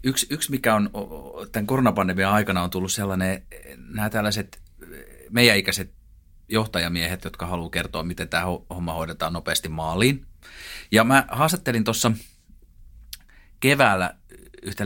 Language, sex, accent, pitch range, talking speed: Finnish, male, native, 85-115 Hz, 120 wpm